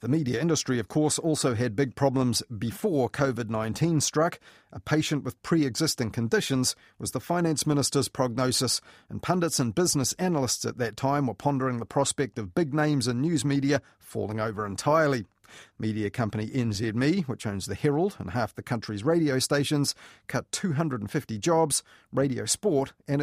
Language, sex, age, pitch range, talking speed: English, male, 40-59, 115-155 Hz, 160 wpm